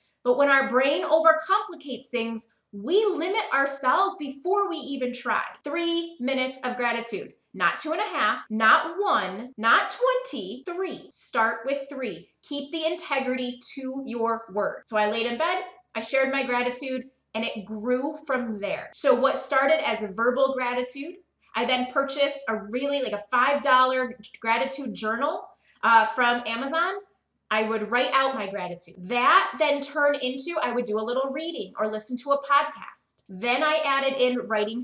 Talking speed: 165 wpm